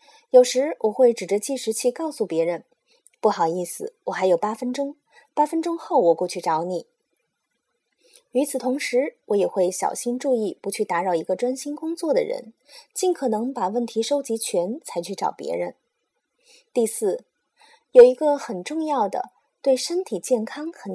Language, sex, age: Chinese, female, 20-39